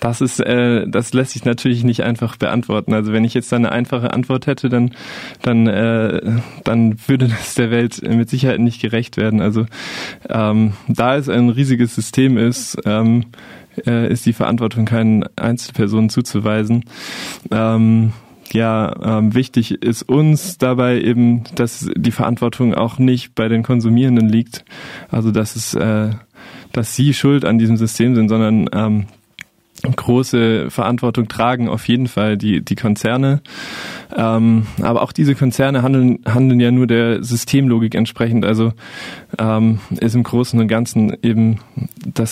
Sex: male